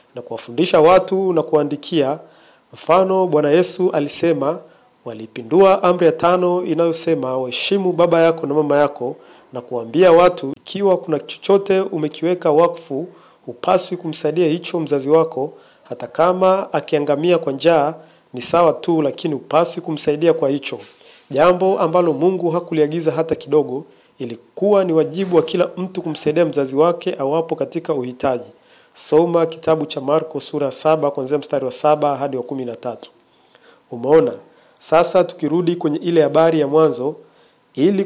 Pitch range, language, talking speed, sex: 145-175 Hz, Swahili, 135 wpm, male